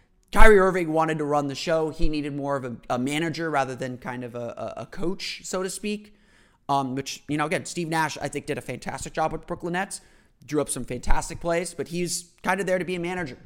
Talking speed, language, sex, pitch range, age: 240 wpm, English, male, 135-175 Hz, 30-49